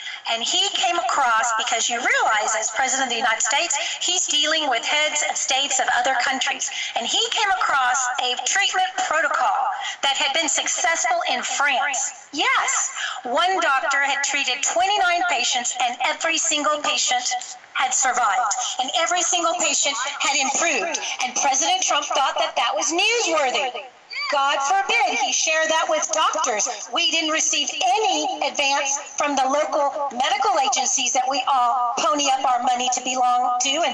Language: English